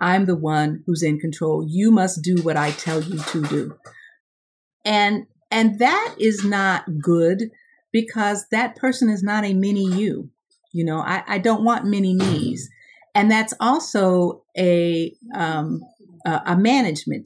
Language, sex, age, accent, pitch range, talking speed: English, female, 50-69, American, 160-205 Hz, 155 wpm